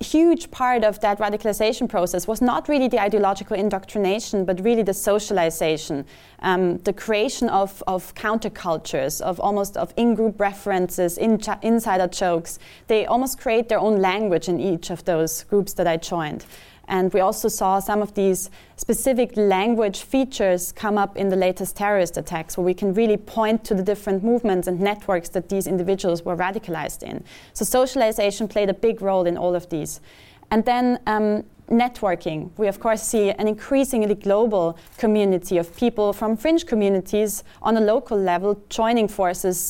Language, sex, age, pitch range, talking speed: English, female, 20-39, 180-215 Hz, 165 wpm